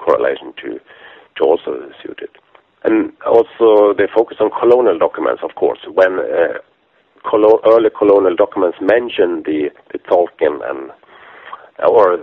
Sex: male